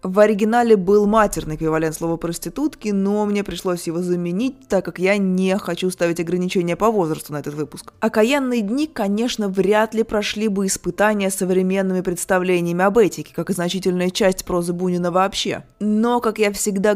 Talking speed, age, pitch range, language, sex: 165 wpm, 20-39, 180-215 Hz, Russian, female